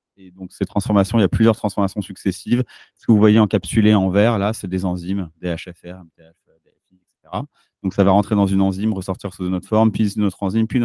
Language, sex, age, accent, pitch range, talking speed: French, male, 30-49, French, 90-115 Hz, 230 wpm